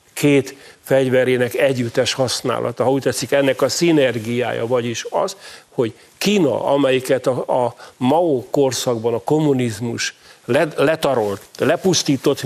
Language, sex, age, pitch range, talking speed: Hungarian, male, 50-69, 125-145 Hz, 110 wpm